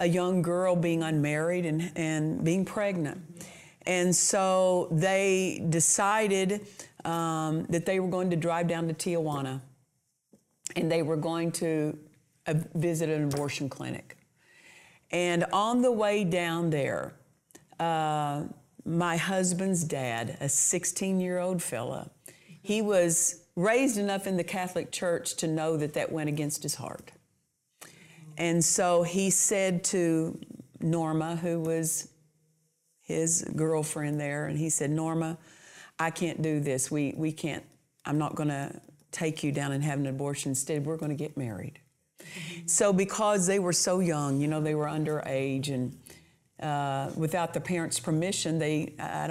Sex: female